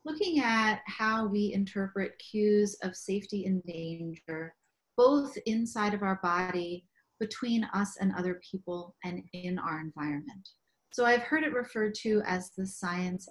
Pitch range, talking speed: 185-230 Hz, 150 wpm